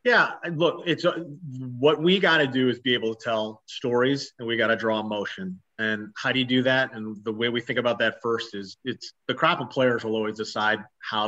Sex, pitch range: male, 110-125 Hz